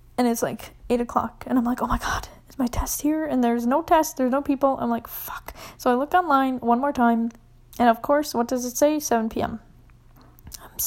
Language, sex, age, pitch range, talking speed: English, female, 10-29, 230-265 Hz, 230 wpm